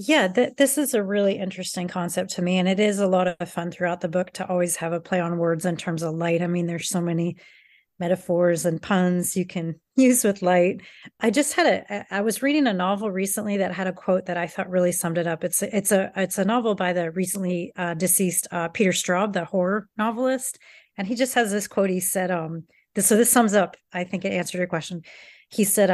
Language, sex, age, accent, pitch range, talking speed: English, female, 30-49, American, 180-215 Hz, 245 wpm